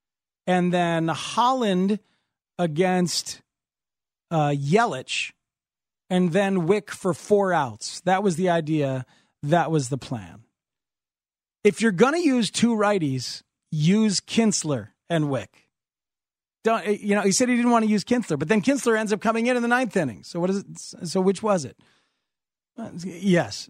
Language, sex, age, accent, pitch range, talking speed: English, male, 40-59, American, 150-200 Hz, 160 wpm